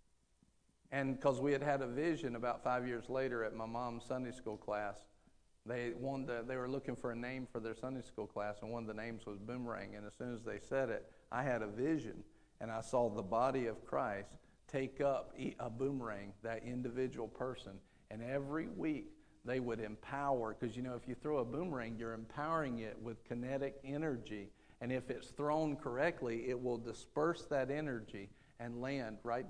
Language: English